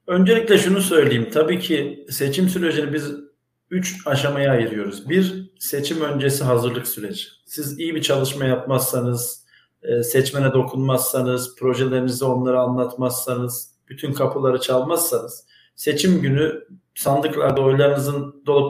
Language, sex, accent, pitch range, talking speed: Turkish, male, native, 130-155 Hz, 110 wpm